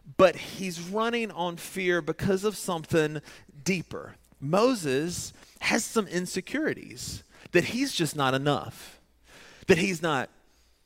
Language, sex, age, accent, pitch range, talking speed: English, male, 30-49, American, 135-195 Hz, 115 wpm